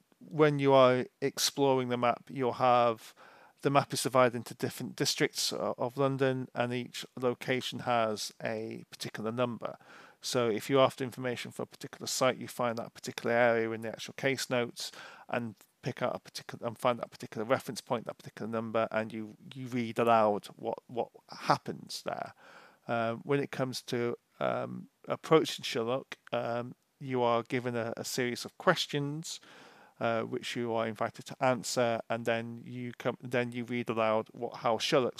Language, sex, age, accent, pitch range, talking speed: English, male, 40-59, British, 115-135 Hz, 170 wpm